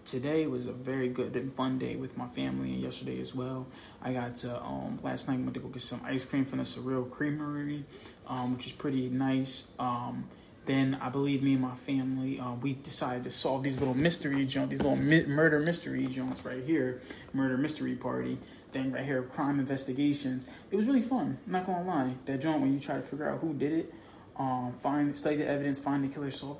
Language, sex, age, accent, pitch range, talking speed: English, male, 20-39, American, 125-140 Hz, 225 wpm